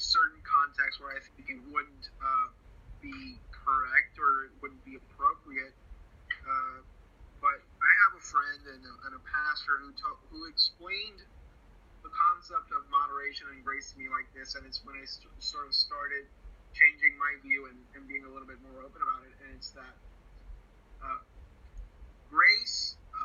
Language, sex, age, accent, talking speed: English, male, 30-49, American, 165 wpm